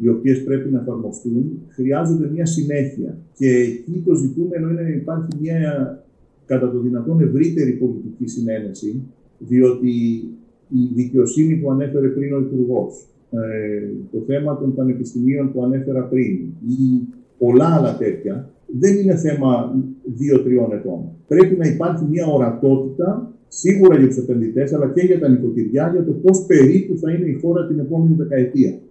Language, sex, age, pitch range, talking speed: Greek, male, 50-69, 120-160 Hz, 145 wpm